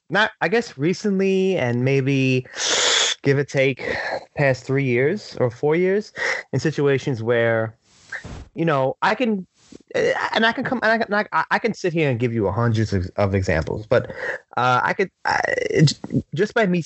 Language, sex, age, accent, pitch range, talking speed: English, male, 20-39, American, 115-155 Hz, 165 wpm